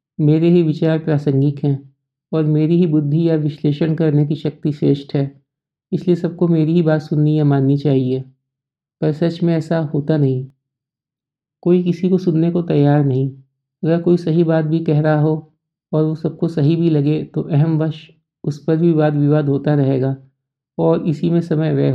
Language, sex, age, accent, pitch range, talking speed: Hindi, male, 50-69, native, 140-165 Hz, 185 wpm